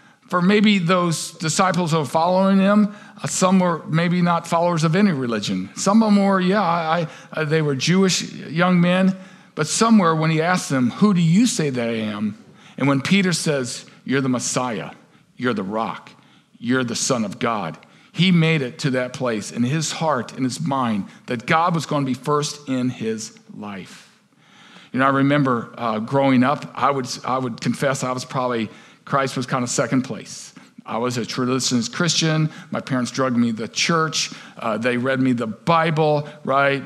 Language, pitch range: English, 135-180 Hz